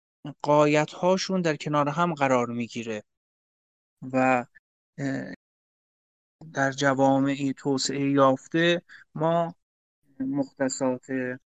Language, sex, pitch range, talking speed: Persian, male, 130-180 Hz, 75 wpm